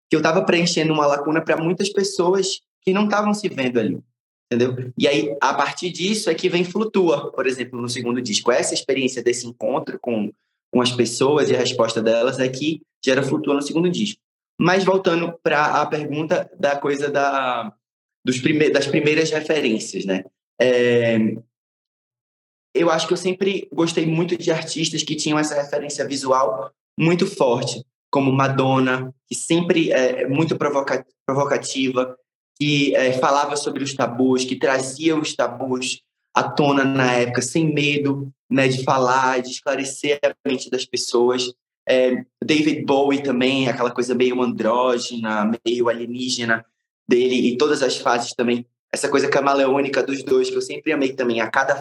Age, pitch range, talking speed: 20-39, 125-155 Hz, 160 wpm